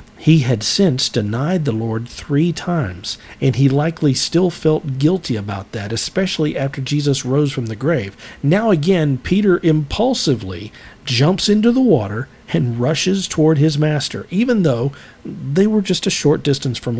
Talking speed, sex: 160 wpm, male